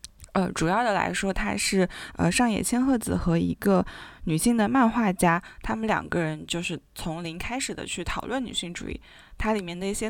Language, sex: Chinese, female